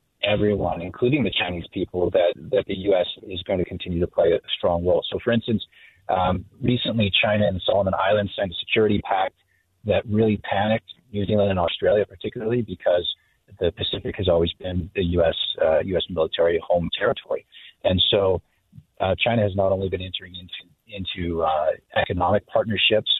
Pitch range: 95-110 Hz